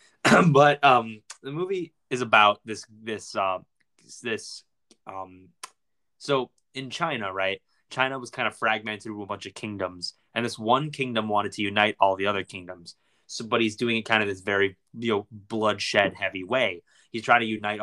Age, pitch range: 20-39, 100-120 Hz